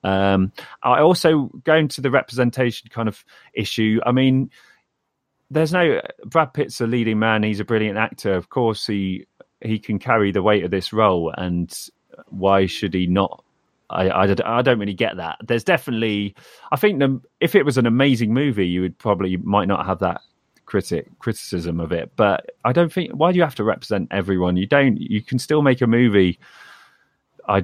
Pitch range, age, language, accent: 90-120 Hz, 30-49, English, British